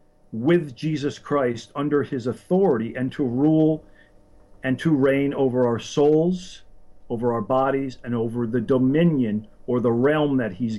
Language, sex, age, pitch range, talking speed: English, male, 50-69, 105-150 Hz, 150 wpm